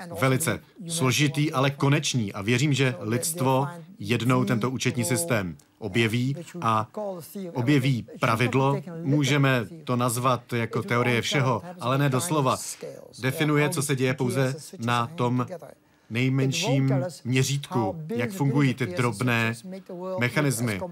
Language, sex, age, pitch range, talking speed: Czech, male, 40-59, 115-140 Hz, 110 wpm